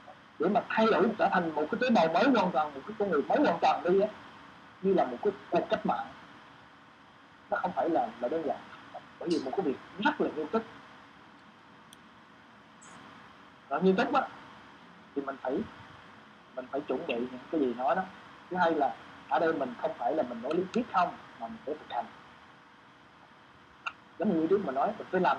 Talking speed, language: 210 wpm, Vietnamese